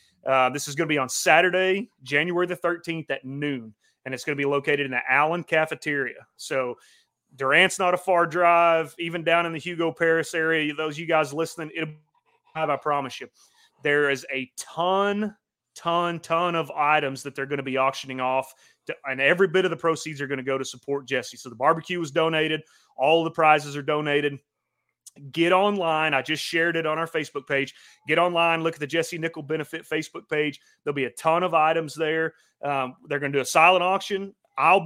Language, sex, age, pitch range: English, male, 30-49, 140-175 Hz